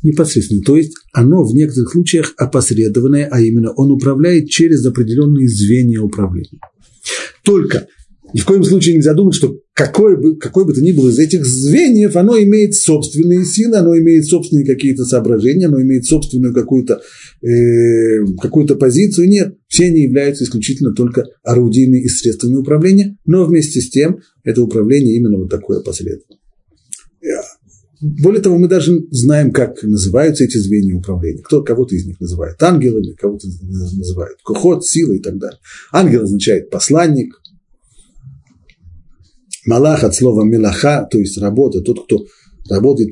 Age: 50-69